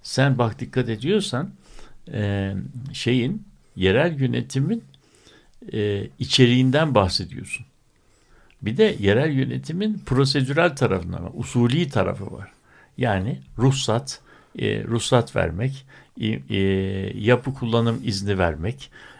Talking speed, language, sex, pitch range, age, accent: 85 wpm, Turkish, male, 110-140 Hz, 60-79, native